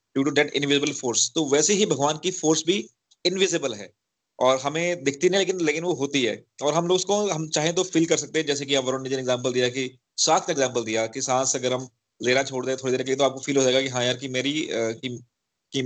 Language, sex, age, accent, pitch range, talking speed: Hindi, male, 30-49, native, 130-180 Hz, 225 wpm